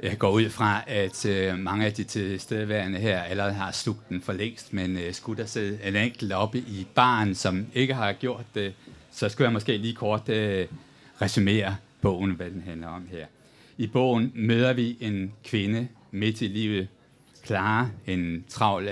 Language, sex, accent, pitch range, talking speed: Danish, male, native, 95-115 Hz, 175 wpm